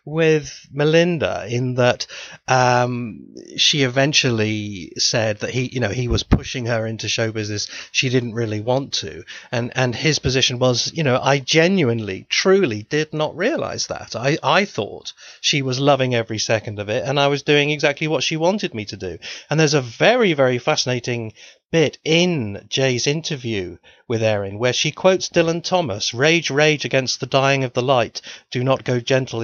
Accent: British